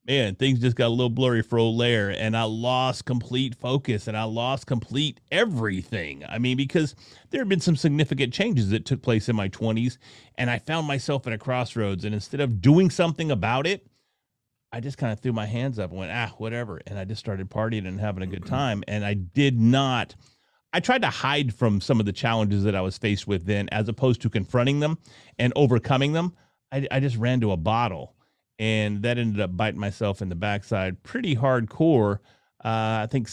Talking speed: 210 wpm